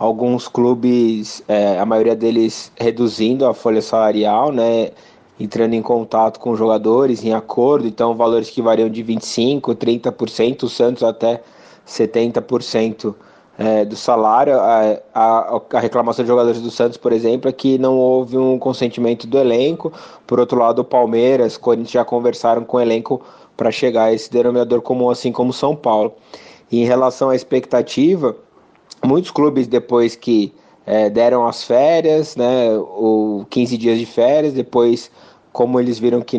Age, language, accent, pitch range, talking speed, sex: 20-39, Portuguese, Brazilian, 115-125 Hz, 155 wpm, male